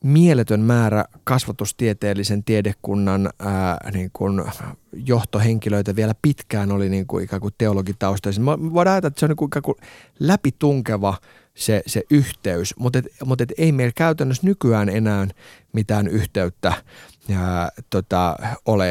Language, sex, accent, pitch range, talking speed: Finnish, male, native, 100-125 Hz, 120 wpm